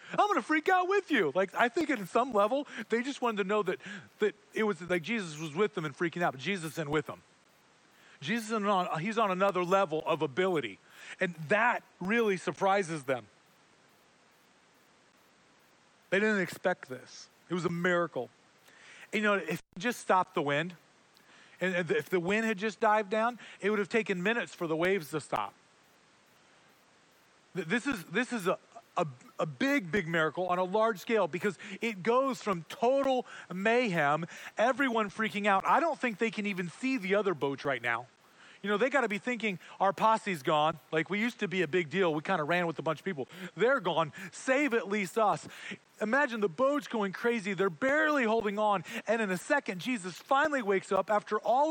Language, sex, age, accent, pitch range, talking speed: English, male, 40-59, American, 180-230 Hz, 200 wpm